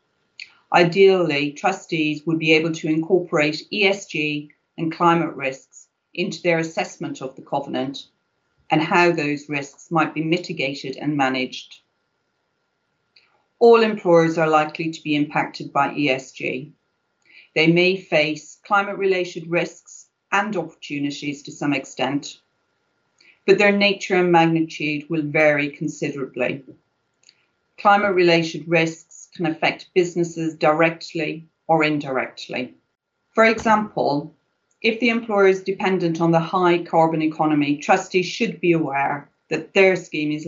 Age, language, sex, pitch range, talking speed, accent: 40-59, English, female, 150-180 Hz, 120 wpm, British